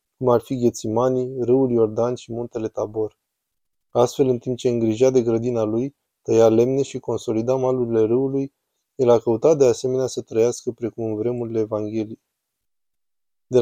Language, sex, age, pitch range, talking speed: Romanian, male, 20-39, 115-130 Hz, 155 wpm